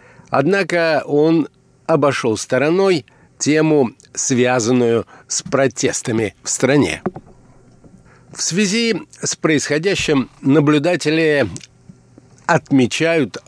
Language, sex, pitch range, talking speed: Russian, male, 125-160 Hz, 70 wpm